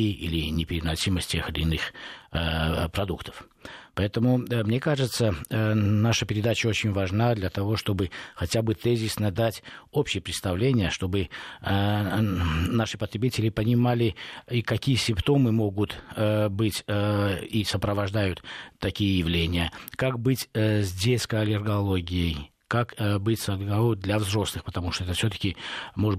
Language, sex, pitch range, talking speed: Russian, male, 95-115 Hz, 125 wpm